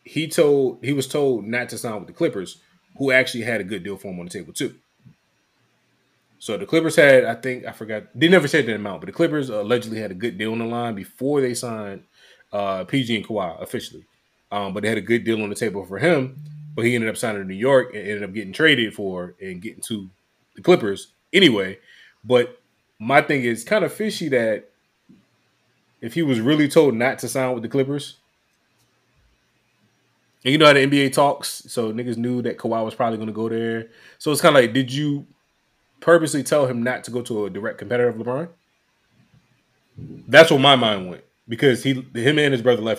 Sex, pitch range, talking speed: male, 110-140 Hz, 215 wpm